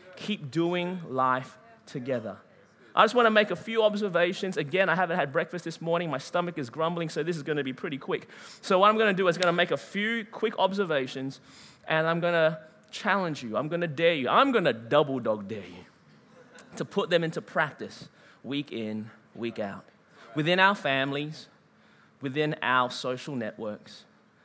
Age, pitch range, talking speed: 20-39, 135-190 Hz, 190 wpm